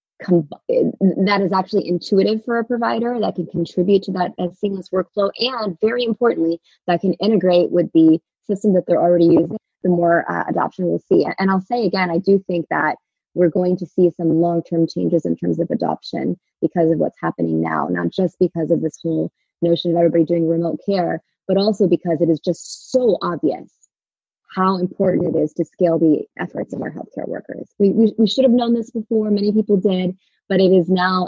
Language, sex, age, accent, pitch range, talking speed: English, female, 20-39, American, 170-195 Hz, 200 wpm